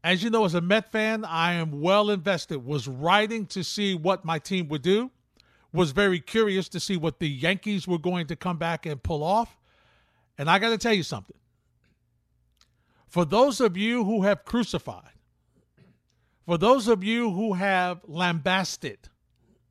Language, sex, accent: English, male, American